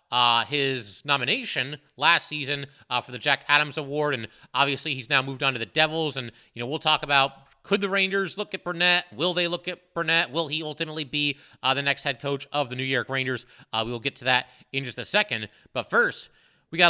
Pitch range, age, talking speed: 135-180 Hz, 30-49, 230 wpm